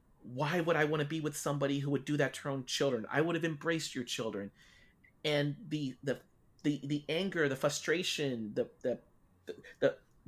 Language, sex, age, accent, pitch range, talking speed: English, male, 30-49, American, 120-155 Hz, 185 wpm